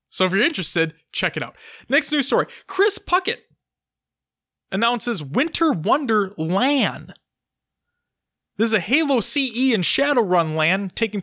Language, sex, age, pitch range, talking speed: English, male, 20-39, 180-250 Hz, 135 wpm